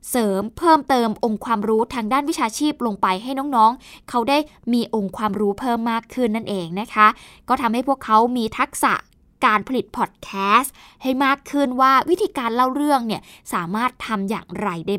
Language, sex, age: Thai, female, 20-39